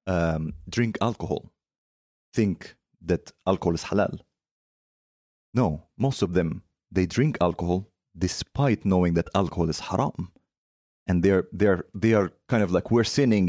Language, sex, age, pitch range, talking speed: Swedish, male, 30-49, 90-115 Hz, 140 wpm